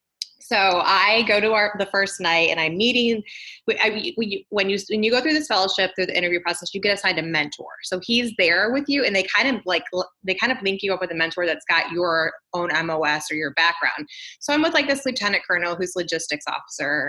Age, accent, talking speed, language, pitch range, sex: 20-39, American, 240 wpm, English, 170-230 Hz, female